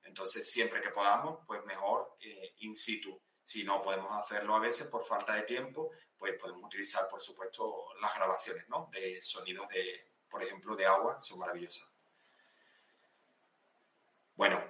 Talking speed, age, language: 150 wpm, 30-49, Spanish